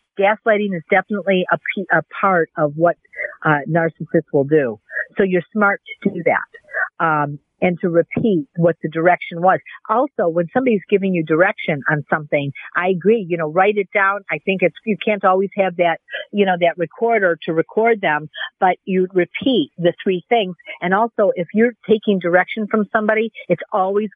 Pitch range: 165-200 Hz